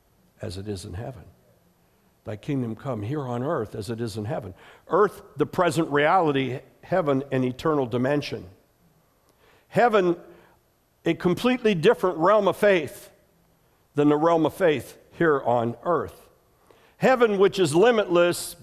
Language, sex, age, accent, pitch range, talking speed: English, male, 60-79, American, 140-195 Hz, 140 wpm